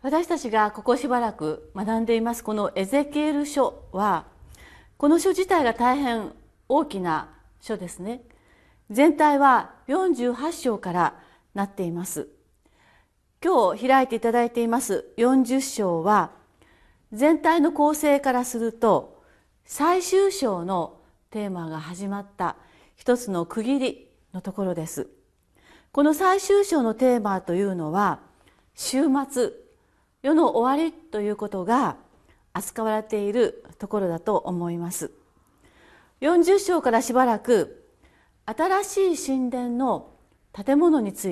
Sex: female